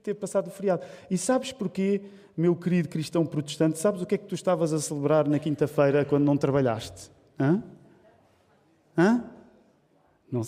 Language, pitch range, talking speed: Portuguese, 140-190 Hz, 160 wpm